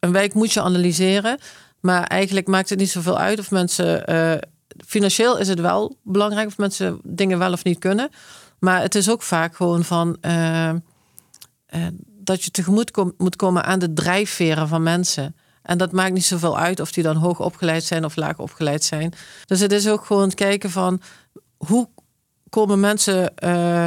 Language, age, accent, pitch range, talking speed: Dutch, 40-59, Dutch, 170-200 Hz, 190 wpm